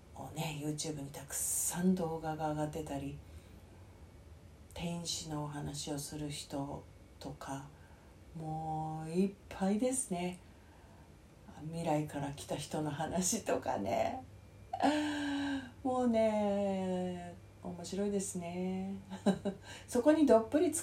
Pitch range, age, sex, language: 145-210 Hz, 40-59, female, Japanese